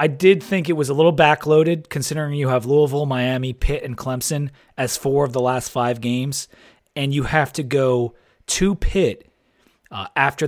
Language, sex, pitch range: English, male, 125-160 Hz